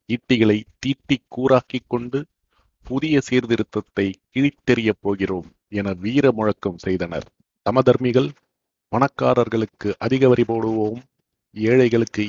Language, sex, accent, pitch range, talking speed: Tamil, male, native, 105-130 Hz, 85 wpm